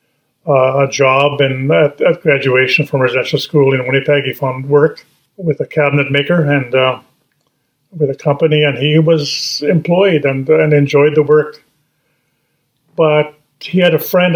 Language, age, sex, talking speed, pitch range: English, 50-69, male, 160 wpm, 140-155 Hz